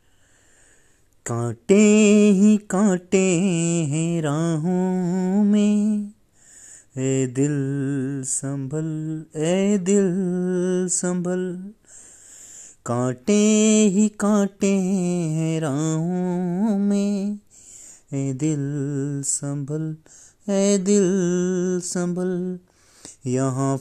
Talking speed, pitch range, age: 65 wpm, 150-205 Hz, 30-49